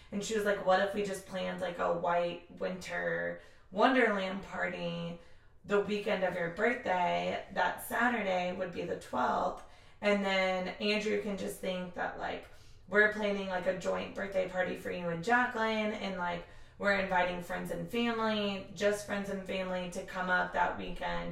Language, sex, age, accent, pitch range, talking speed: English, female, 20-39, American, 180-205 Hz, 170 wpm